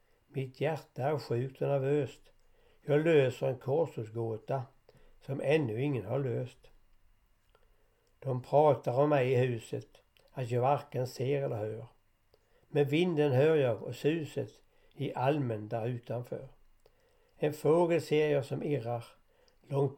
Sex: male